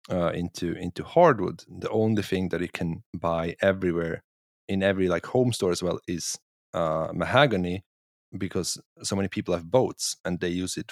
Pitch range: 85-100 Hz